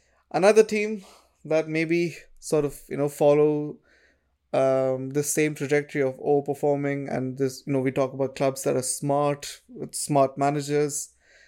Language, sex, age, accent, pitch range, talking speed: English, male, 20-39, Indian, 135-160 Hz, 150 wpm